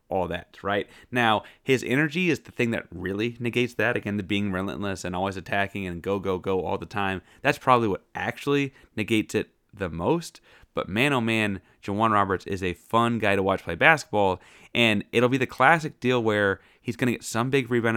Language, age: English, 30-49